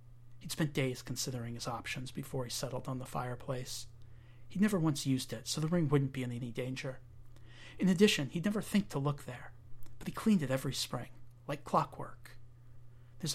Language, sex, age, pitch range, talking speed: English, male, 40-59, 120-150 Hz, 190 wpm